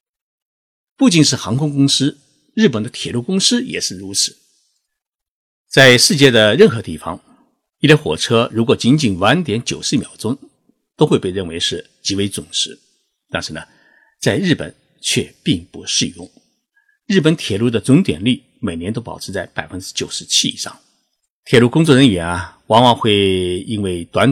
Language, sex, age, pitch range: Chinese, male, 50-69, 105-155 Hz